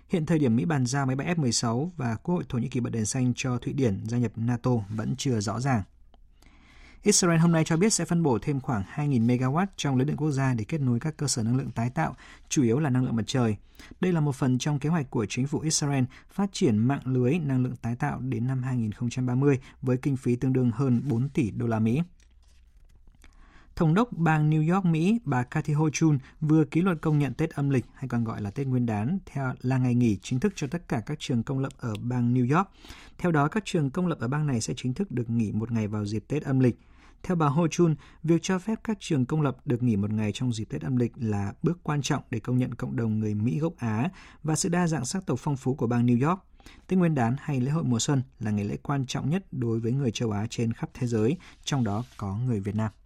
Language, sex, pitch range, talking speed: Vietnamese, male, 115-150 Hz, 260 wpm